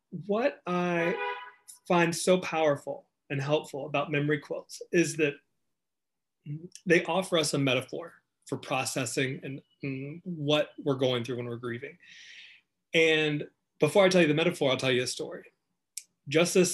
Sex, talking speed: male, 145 wpm